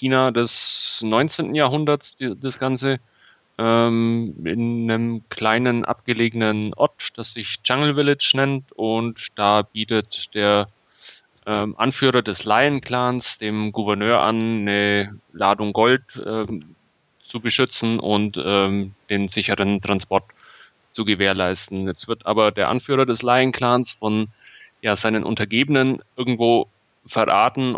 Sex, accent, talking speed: male, German, 120 wpm